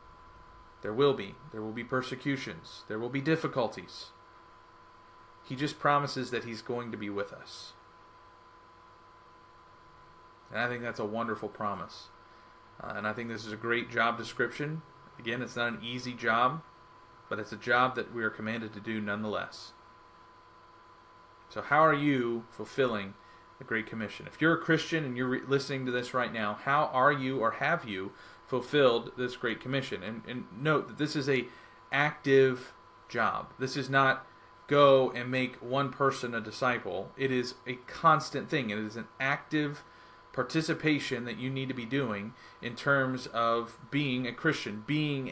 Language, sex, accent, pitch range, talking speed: English, male, American, 115-140 Hz, 165 wpm